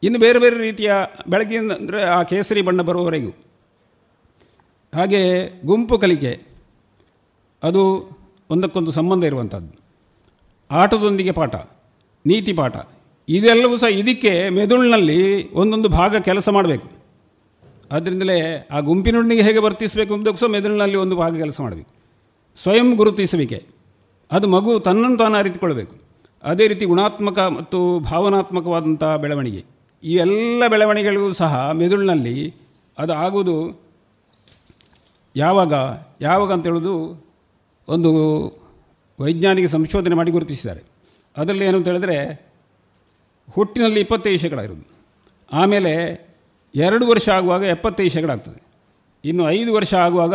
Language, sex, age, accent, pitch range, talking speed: Kannada, male, 50-69, native, 145-200 Hz, 100 wpm